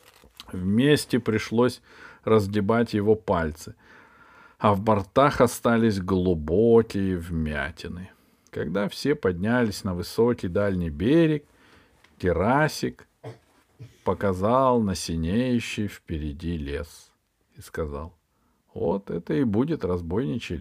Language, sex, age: Russian, male, 50-69